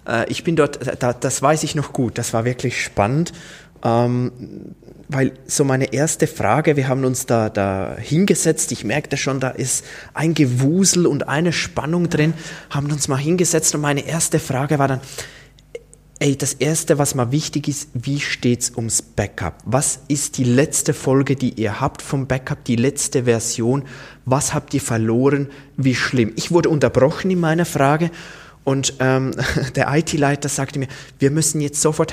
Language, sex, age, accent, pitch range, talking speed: German, male, 20-39, German, 130-160 Hz, 170 wpm